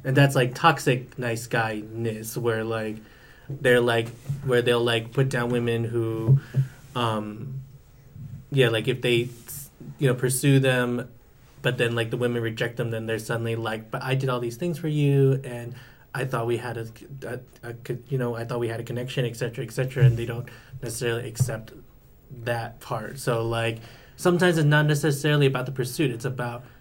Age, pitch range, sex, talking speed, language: 20-39, 115-135 Hz, male, 185 wpm, English